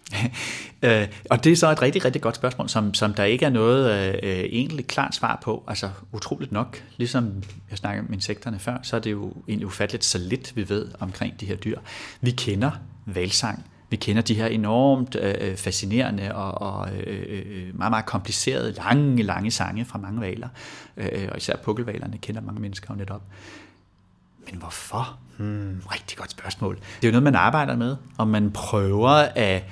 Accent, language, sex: native, Danish, male